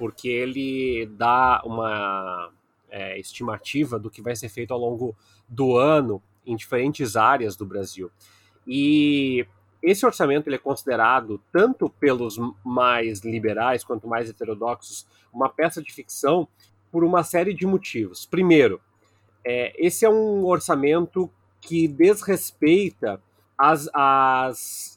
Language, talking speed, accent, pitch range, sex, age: Portuguese, 120 wpm, Brazilian, 115-165 Hz, male, 30-49